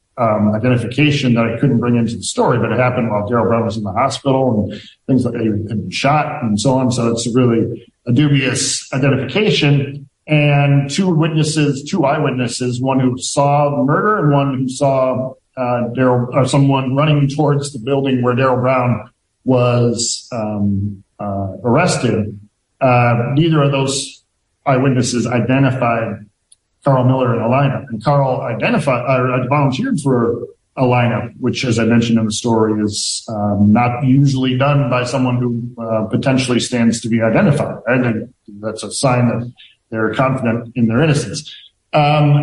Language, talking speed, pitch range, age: English, 165 wpm, 115-140 Hz, 50-69